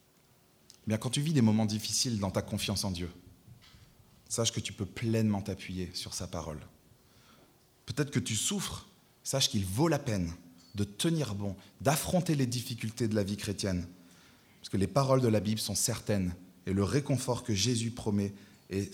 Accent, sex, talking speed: French, male, 175 wpm